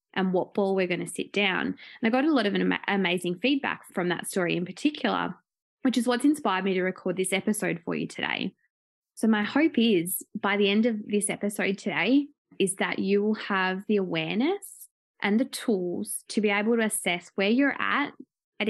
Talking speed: 205 wpm